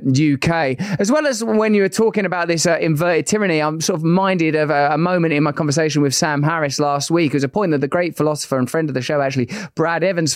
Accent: British